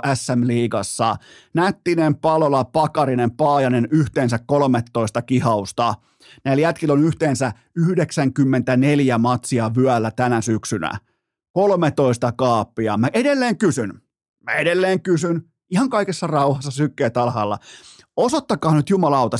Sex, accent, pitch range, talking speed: male, native, 125-175 Hz, 100 wpm